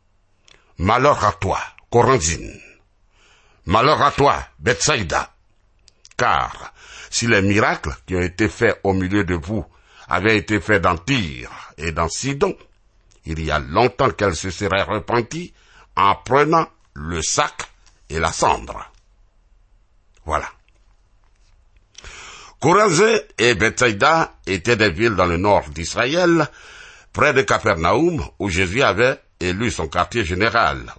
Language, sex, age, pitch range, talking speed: French, male, 60-79, 90-115 Hz, 125 wpm